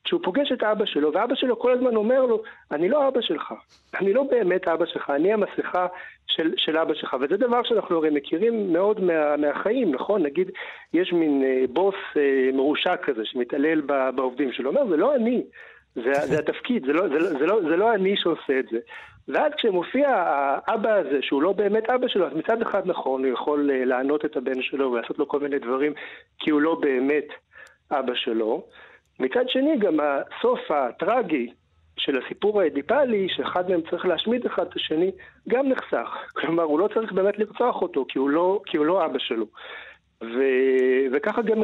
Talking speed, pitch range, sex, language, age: 185 wpm, 145-225 Hz, male, Hebrew, 60-79